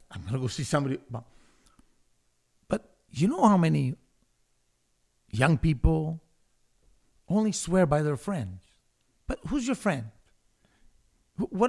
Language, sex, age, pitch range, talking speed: English, male, 50-69, 125-160 Hz, 120 wpm